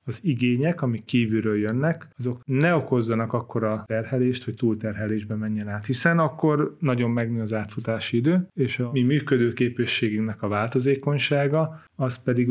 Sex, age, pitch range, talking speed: male, 30-49, 110-130 Hz, 140 wpm